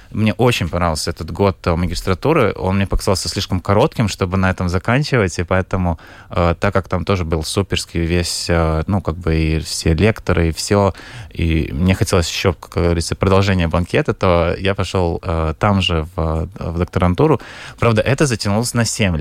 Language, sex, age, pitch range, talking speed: Russian, male, 20-39, 90-105 Hz, 175 wpm